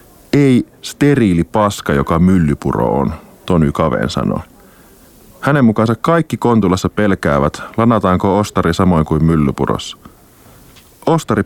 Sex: male